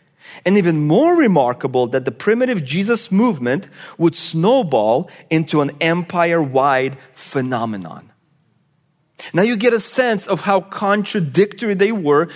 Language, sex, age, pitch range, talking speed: English, male, 30-49, 155-210 Hz, 120 wpm